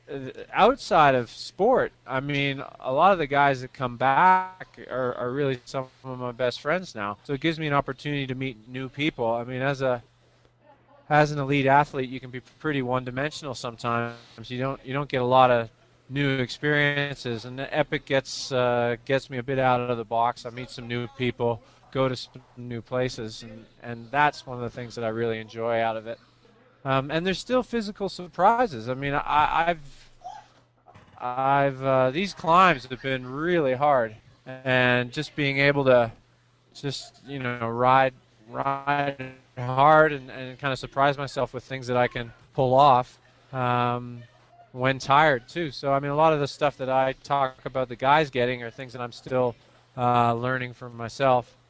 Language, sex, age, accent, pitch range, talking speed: English, male, 20-39, American, 120-140 Hz, 190 wpm